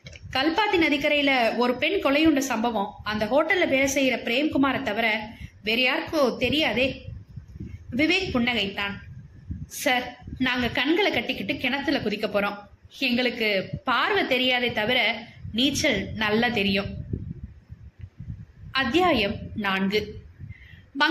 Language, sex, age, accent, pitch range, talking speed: Tamil, female, 20-39, native, 215-300 Hz, 35 wpm